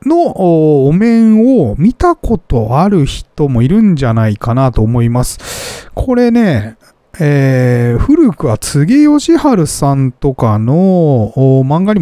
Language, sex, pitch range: Japanese, male, 125-210 Hz